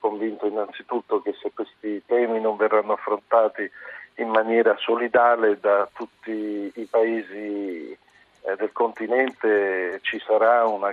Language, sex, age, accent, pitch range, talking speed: Italian, male, 50-69, native, 100-115 Hz, 115 wpm